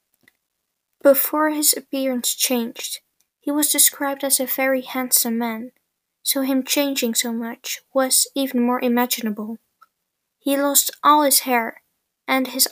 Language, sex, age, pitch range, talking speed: English, female, 10-29, 240-275 Hz, 130 wpm